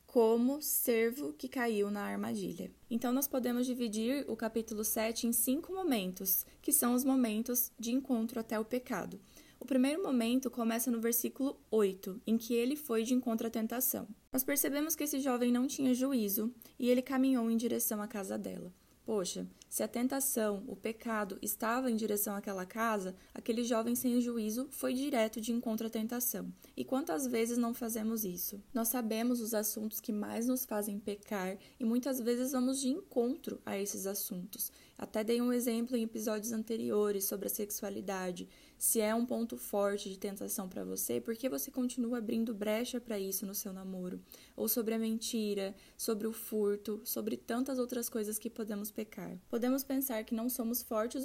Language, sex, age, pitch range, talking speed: Portuguese, female, 20-39, 215-250 Hz, 175 wpm